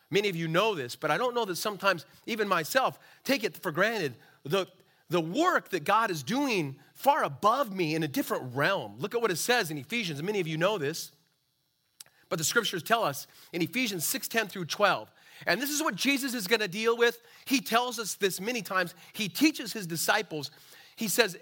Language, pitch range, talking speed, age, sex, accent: English, 175-245 Hz, 215 wpm, 40-59, male, American